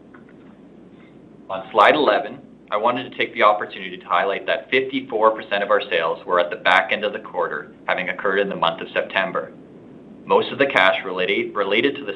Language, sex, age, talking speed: English, male, 30-49, 190 wpm